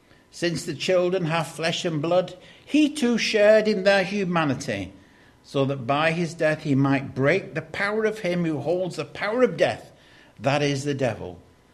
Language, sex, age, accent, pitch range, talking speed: English, male, 60-79, British, 140-215 Hz, 180 wpm